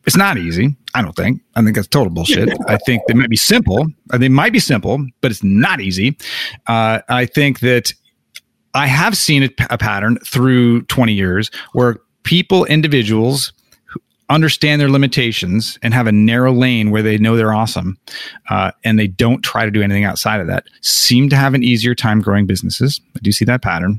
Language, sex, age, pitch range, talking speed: English, male, 40-59, 110-145 Hz, 200 wpm